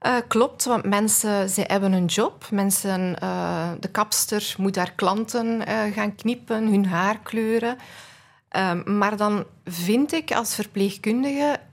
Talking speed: 135 wpm